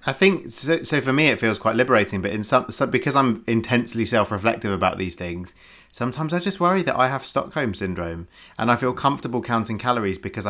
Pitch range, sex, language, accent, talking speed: 100-130 Hz, male, English, British, 210 wpm